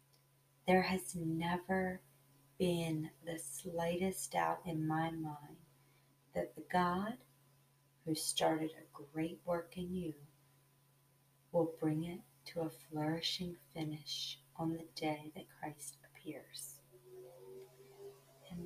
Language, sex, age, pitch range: English, female, 30-49, 140-165 Hz